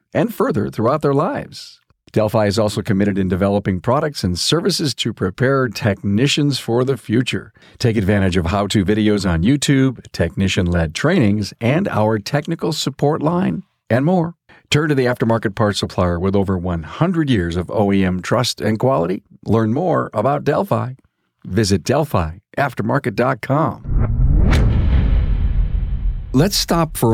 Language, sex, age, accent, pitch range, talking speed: English, male, 50-69, American, 100-130 Hz, 135 wpm